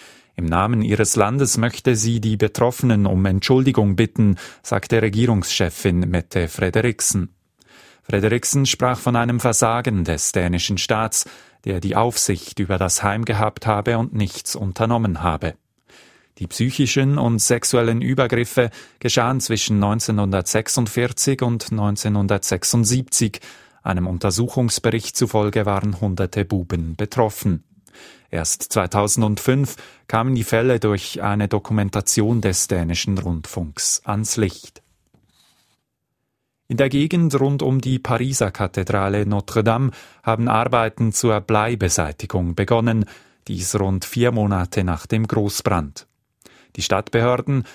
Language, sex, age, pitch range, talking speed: German, male, 30-49, 100-120 Hz, 110 wpm